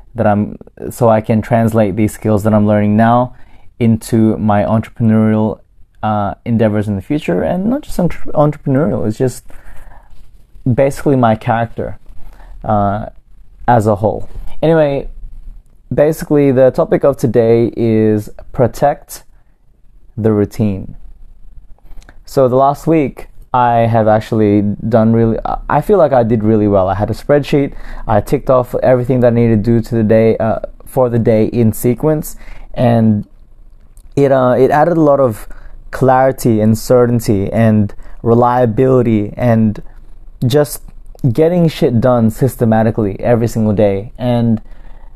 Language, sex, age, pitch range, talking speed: English, male, 20-39, 110-130 Hz, 135 wpm